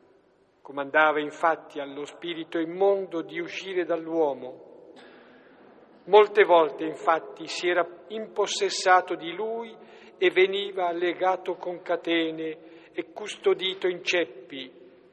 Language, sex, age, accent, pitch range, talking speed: Italian, male, 50-69, native, 160-205 Hz, 100 wpm